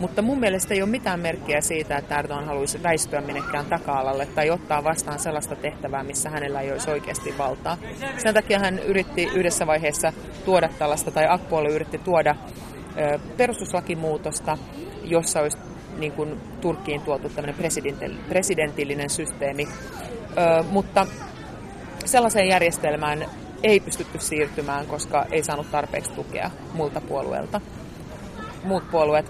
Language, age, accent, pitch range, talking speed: Finnish, 30-49, native, 150-180 Hz, 125 wpm